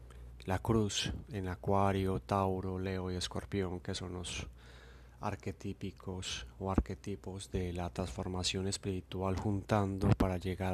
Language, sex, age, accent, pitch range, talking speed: Spanish, male, 30-49, Colombian, 90-100 Hz, 115 wpm